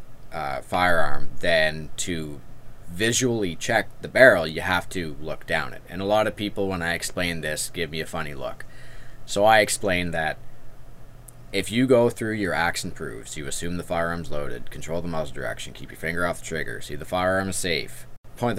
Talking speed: 195 wpm